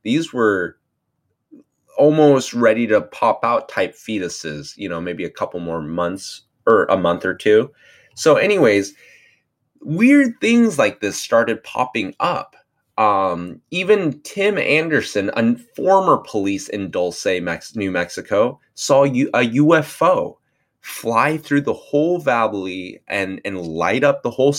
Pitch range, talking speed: 95-155 Hz, 135 wpm